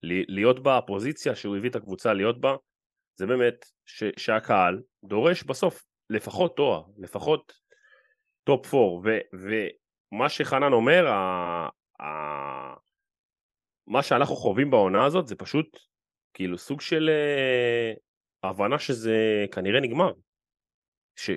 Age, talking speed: 30-49, 120 wpm